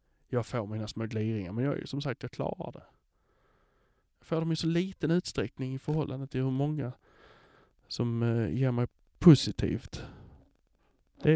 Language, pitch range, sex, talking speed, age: English, 125-160 Hz, male, 155 wpm, 20-39